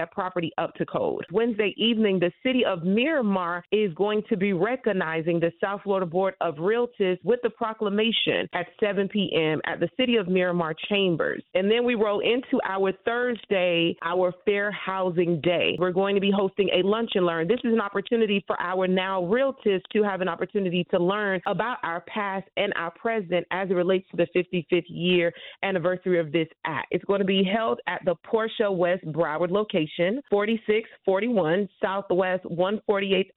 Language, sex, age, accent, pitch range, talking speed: English, female, 30-49, American, 180-215 Hz, 175 wpm